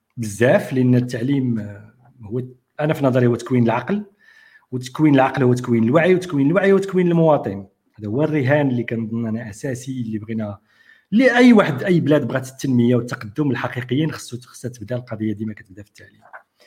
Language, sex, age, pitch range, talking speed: Arabic, male, 50-69, 115-170 Hz, 155 wpm